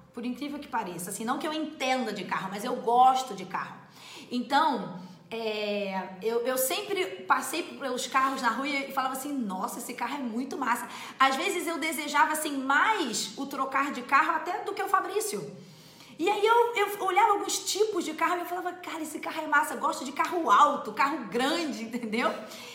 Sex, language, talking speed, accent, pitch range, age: female, Portuguese, 200 wpm, Brazilian, 245-365 Hz, 20-39